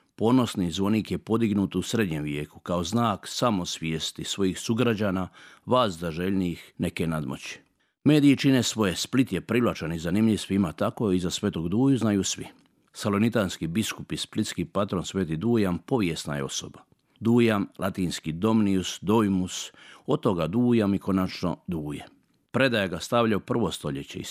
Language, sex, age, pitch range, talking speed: Croatian, male, 50-69, 90-115 Hz, 140 wpm